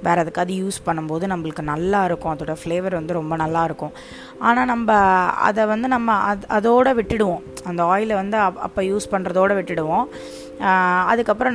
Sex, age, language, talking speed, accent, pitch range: female, 20-39, Tamil, 140 wpm, native, 170-200 Hz